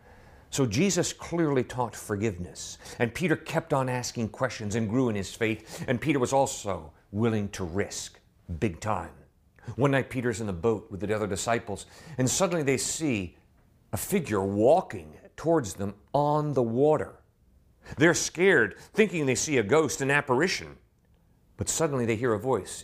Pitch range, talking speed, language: 100-145 Hz, 165 wpm, English